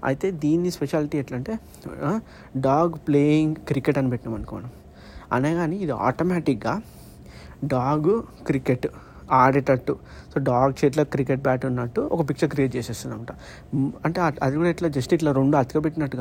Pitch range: 130-155 Hz